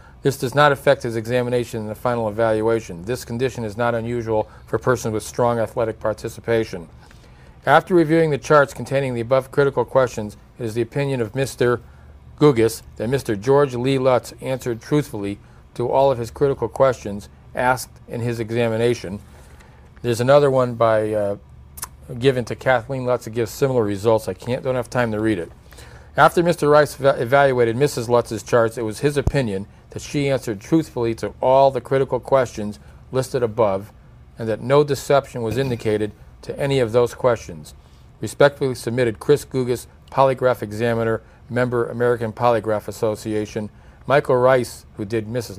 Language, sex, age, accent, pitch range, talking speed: English, male, 50-69, American, 110-130 Hz, 160 wpm